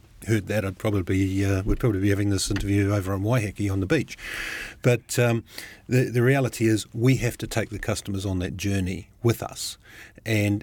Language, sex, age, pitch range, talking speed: English, male, 50-69, 100-115 Hz, 205 wpm